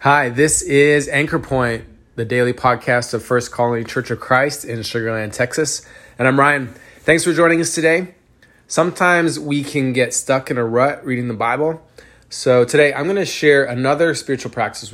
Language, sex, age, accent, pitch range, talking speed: English, male, 20-39, American, 115-140 Hz, 180 wpm